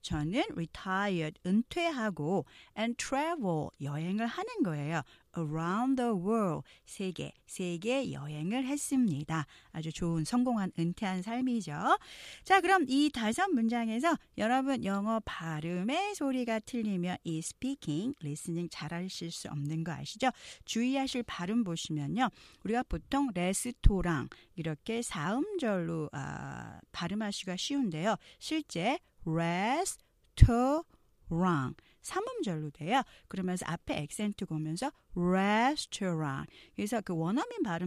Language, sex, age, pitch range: Korean, female, 40-59, 165-250 Hz